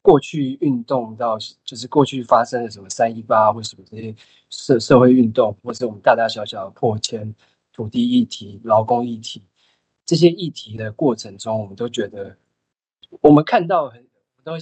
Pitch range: 115-155 Hz